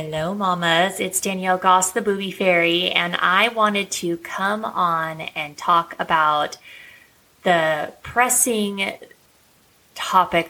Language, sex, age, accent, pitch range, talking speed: English, female, 20-39, American, 165-195 Hz, 115 wpm